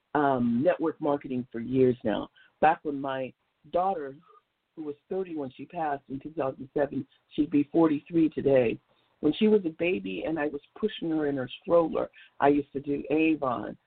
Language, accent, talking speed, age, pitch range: English, American, 175 wpm, 50-69, 135-175 Hz